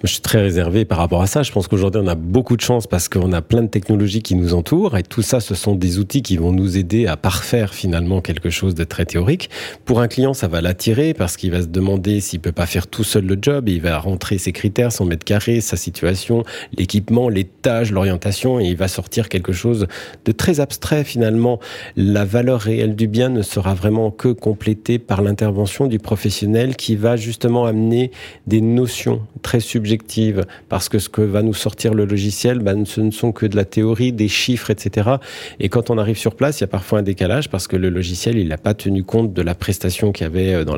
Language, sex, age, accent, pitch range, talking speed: French, male, 40-59, French, 95-115 Hz, 235 wpm